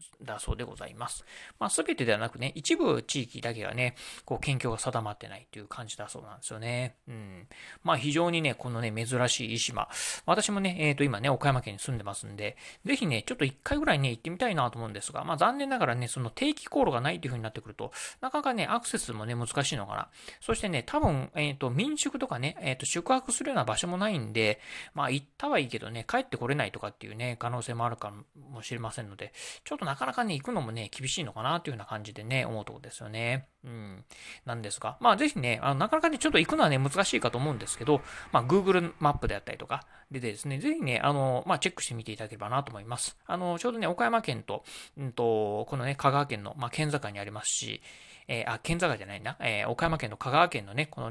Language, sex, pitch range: Japanese, male, 115-170 Hz